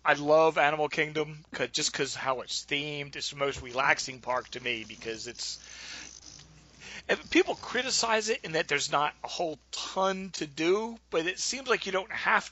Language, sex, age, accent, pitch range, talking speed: English, male, 40-59, American, 130-185 Hz, 180 wpm